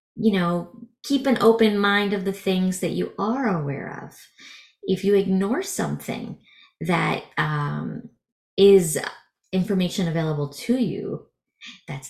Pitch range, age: 170-220 Hz, 30-49